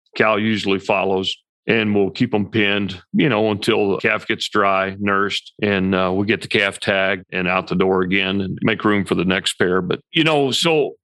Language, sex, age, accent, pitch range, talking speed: English, male, 40-59, American, 105-125 Hz, 210 wpm